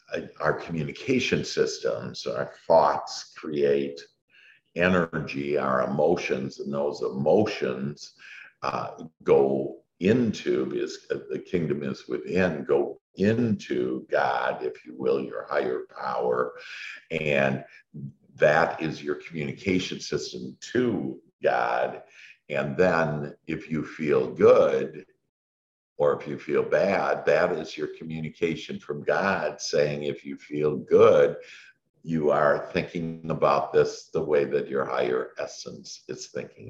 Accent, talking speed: American, 120 wpm